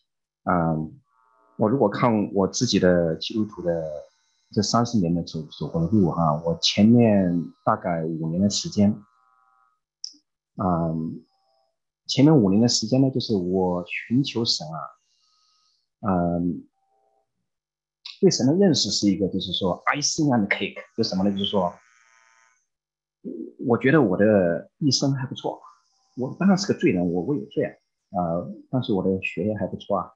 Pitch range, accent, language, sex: 85-130 Hz, Chinese, English, male